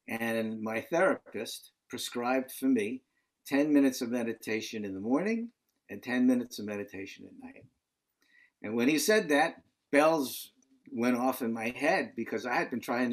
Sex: male